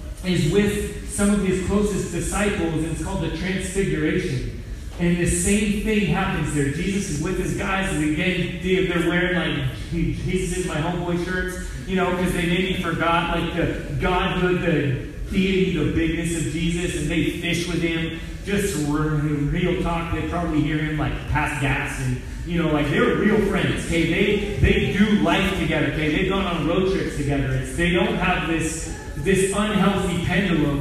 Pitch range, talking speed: 155-185 Hz, 180 wpm